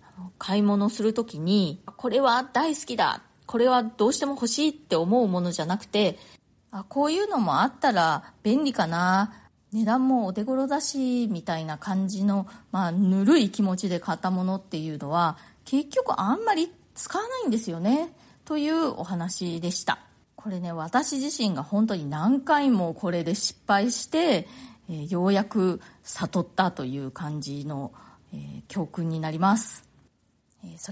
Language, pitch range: Japanese, 175-240 Hz